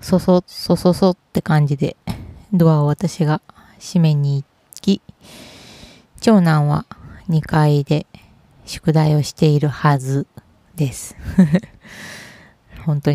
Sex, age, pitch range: female, 20-39, 150-175 Hz